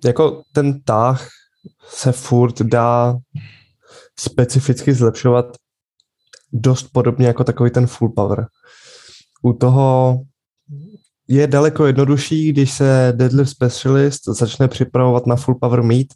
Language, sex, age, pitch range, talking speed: Czech, male, 20-39, 115-130 Hz, 110 wpm